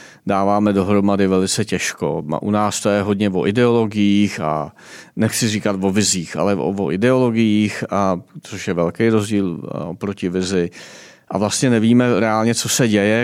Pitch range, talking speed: 95-115 Hz, 145 wpm